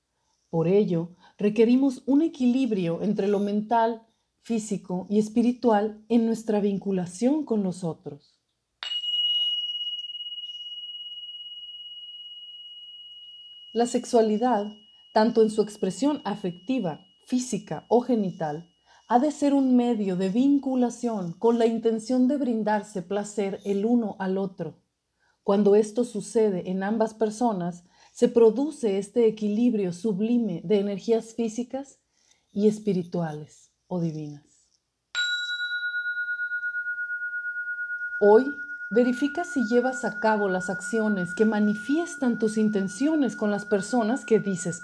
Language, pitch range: Spanish, 200-270 Hz